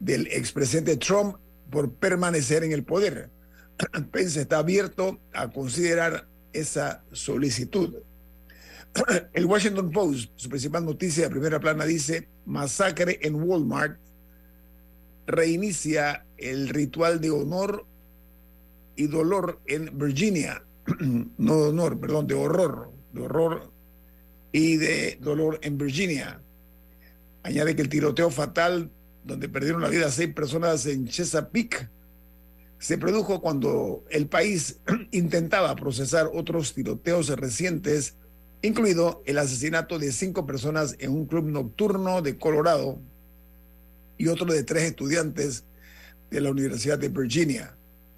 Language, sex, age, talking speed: Spanish, male, 50-69, 120 wpm